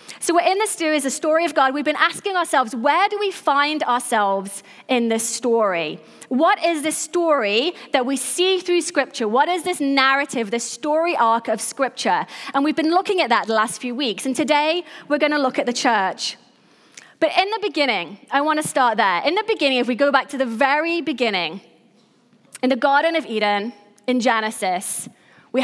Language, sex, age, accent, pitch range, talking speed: English, female, 30-49, British, 220-305 Hz, 200 wpm